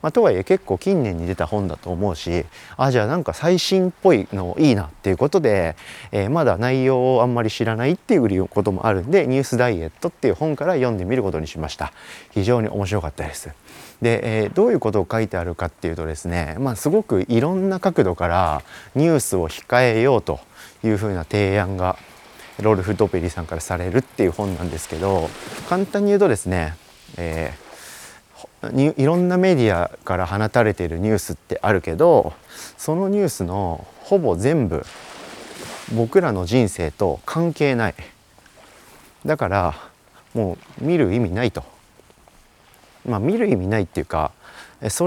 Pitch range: 90-145 Hz